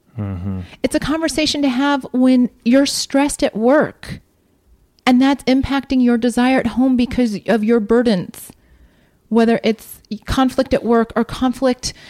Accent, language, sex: American, English, female